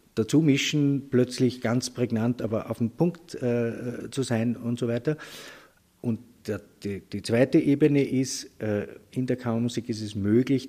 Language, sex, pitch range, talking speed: German, male, 110-135 Hz, 165 wpm